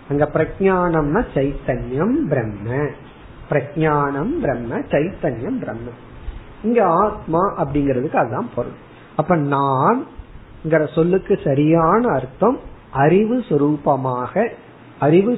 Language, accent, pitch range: Tamil, native, 145-200 Hz